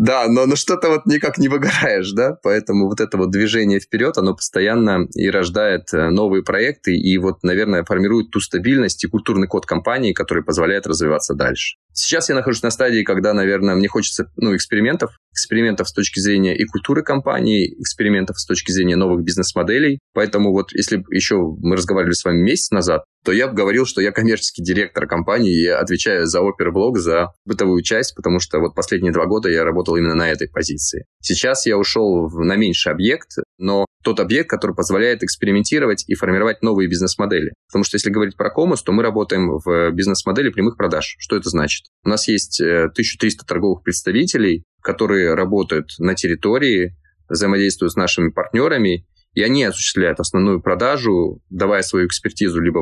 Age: 20-39